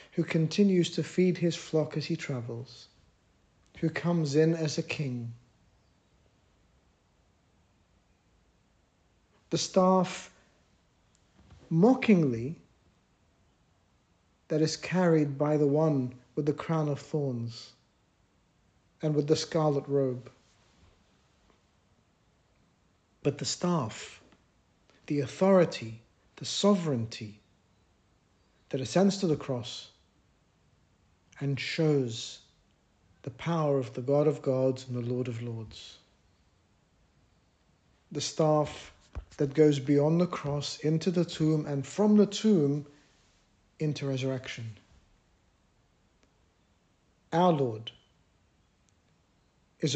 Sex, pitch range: male, 105-155 Hz